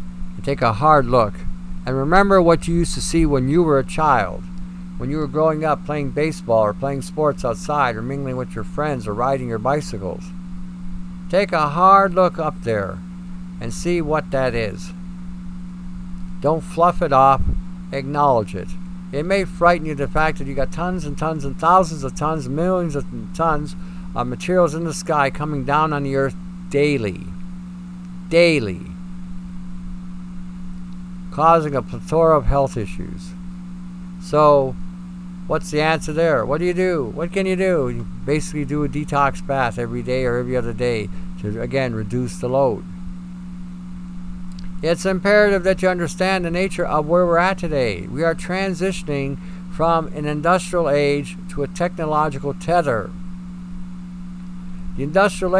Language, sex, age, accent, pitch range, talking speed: English, male, 50-69, American, 145-180 Hz, 155 wpm